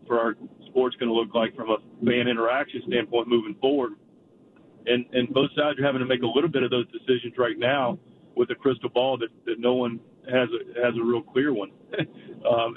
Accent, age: American, 40-59